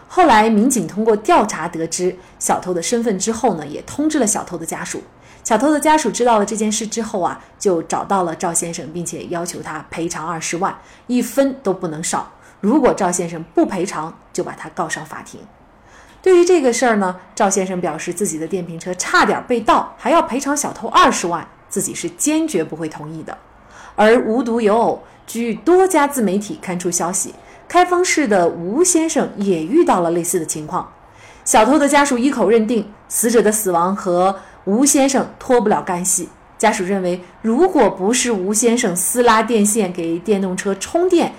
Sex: female